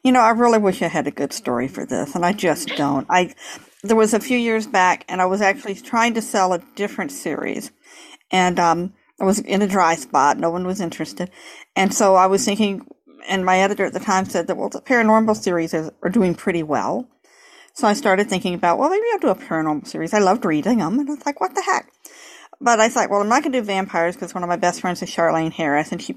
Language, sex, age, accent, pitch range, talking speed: English, female, 50-69, American, 185-250 Hz, 255 wpm